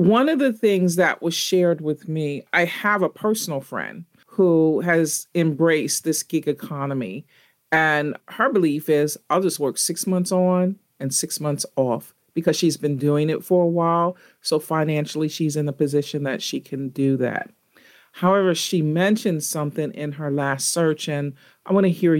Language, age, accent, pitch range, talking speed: English, 40-59, American, 150-185 Hz, 180 wpm